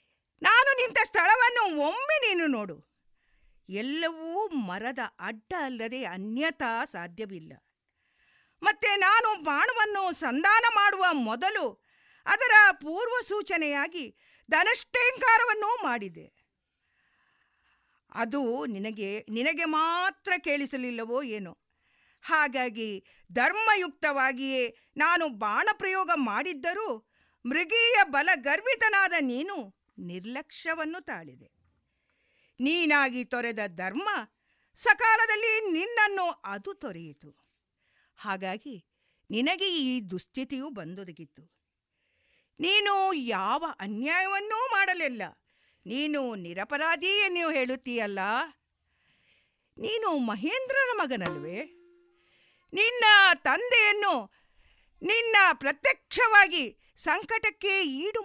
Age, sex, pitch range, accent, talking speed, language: 50-69, female, 245-395 Hz, native, 70 wpm, Kannada